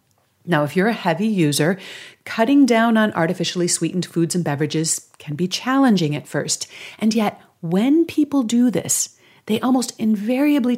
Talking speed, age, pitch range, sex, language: 155 wpm, 40-59, 165-225 Hz, female, English